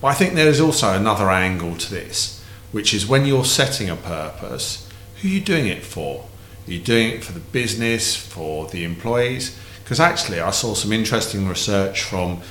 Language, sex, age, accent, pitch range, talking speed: English, male, 40-59, British, 95-110 Hz, 195 wpm